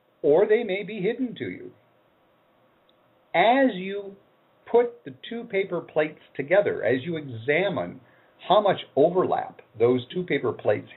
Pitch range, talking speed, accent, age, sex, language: 125-205 Hz, 135 wpm, American, 50-69, male, English